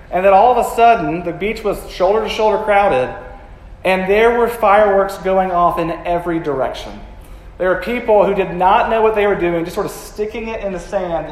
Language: English